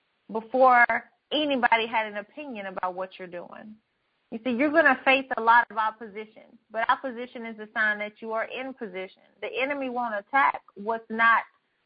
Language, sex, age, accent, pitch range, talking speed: English, female, 30-49, American, 230-295 Hz, 175 wpm